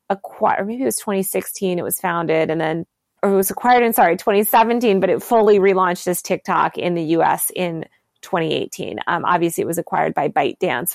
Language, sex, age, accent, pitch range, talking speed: English, female, 20-39, American, 180-220 Hz, 190 wpm